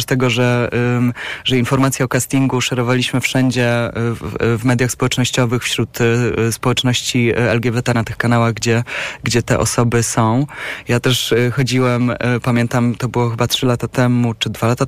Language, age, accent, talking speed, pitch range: Polish, 20-39, native, 140 wpm, 120-130 Hz